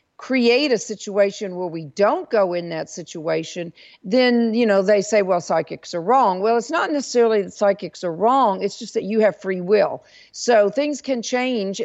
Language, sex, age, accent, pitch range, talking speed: English, female, 50-69, American, 175-230 Hz, 195 wpm